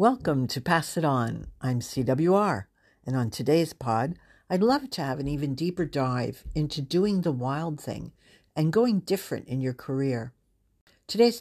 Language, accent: English, American